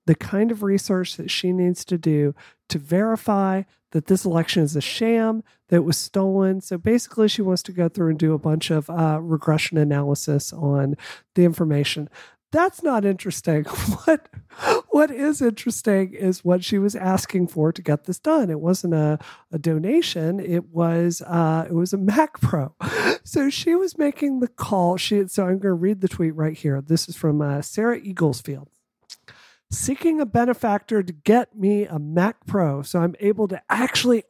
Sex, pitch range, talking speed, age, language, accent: male, 160-210 Hz, 185 wpm, 40-59, English, American